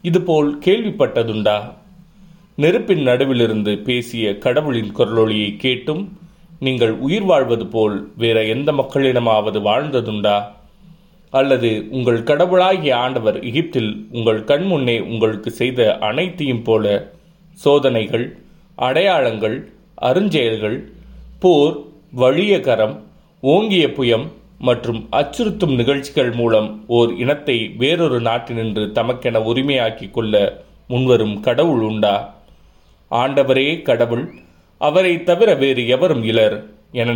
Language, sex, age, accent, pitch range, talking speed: Tamil, male, 30-49, native, 110-155 Hz, 85 wpm